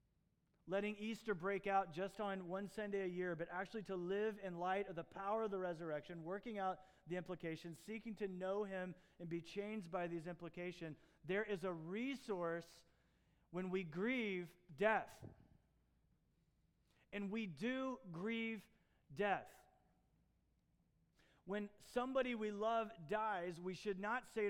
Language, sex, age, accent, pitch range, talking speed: English, male, 40-59, American, 175-215 Hz, 140 wpm